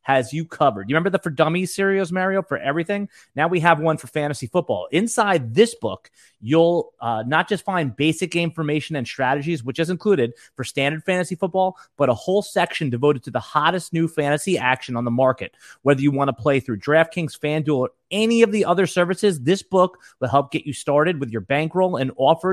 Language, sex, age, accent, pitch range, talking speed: English, male, 30-49, American, 130-170 Hz, 210 wpm